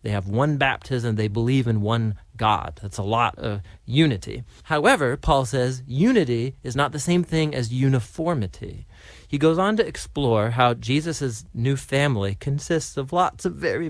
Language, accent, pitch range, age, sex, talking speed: English, American, 115-155 Hz, 40-59, male, 170 wpm